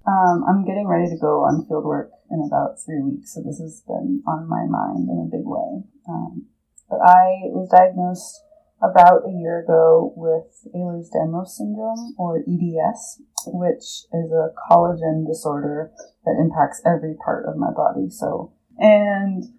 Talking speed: 155 wpm